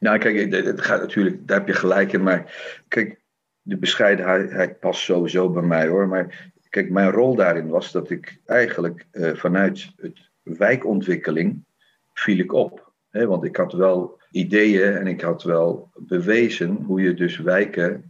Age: 50-69